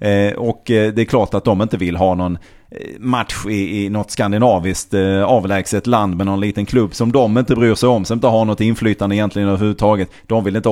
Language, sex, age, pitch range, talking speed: Swedish, male, 30-49, 100-130 Hz, 200 wpm